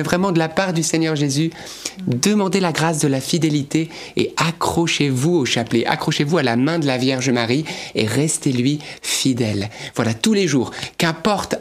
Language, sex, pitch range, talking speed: French, male, 150-210 Hz, 170 wpm